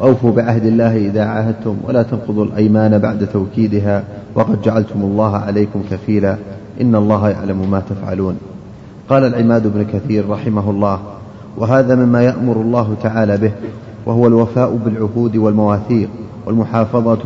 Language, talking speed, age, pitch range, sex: Arabic, 130 wpm, 30-49, 110-120 Hz, male